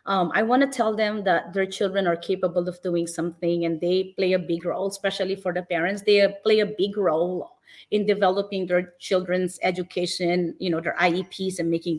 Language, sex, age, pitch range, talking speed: English, female, 30-49, 180-215 Hz, 200 wpm